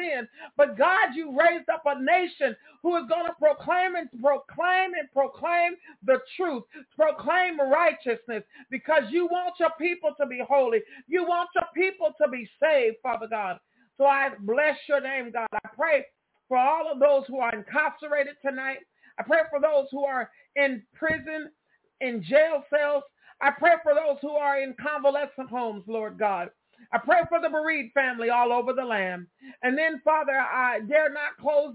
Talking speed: 175 wpm